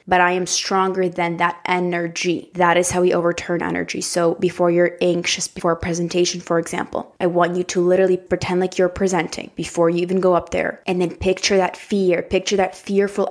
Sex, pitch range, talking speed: female, 180-205 Hz, 205 wpm